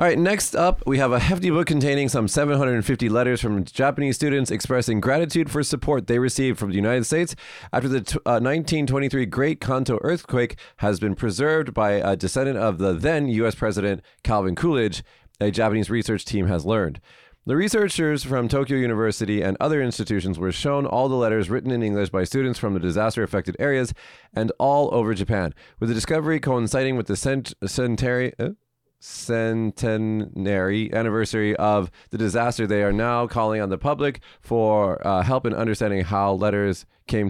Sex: male